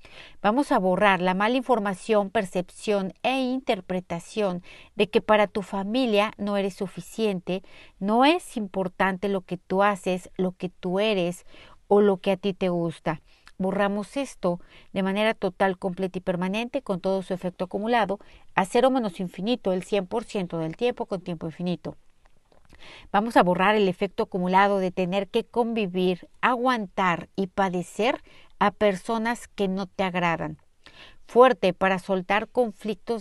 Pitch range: 185-220 Hz